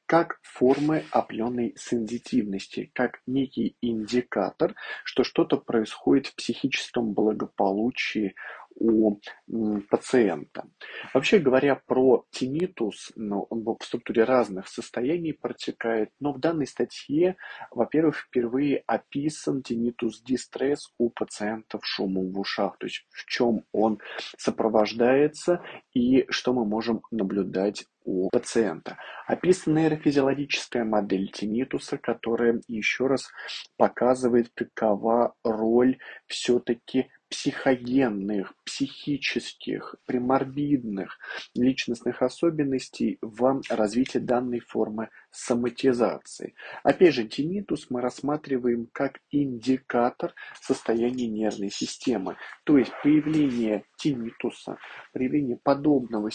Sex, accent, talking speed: male, native, 95 wpm